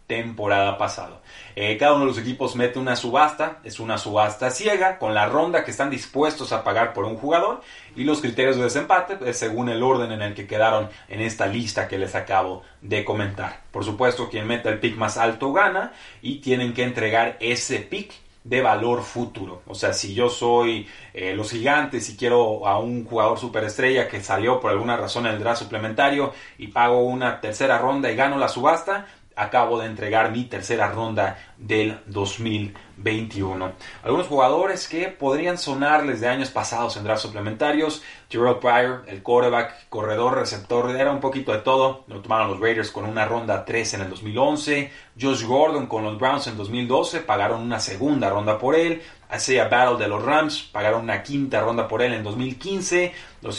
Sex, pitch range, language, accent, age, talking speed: male, 110-130 Hz, Spanish, Mexican, 30-49, 185 wpm